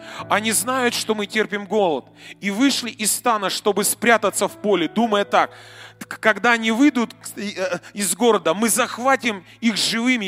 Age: 30-49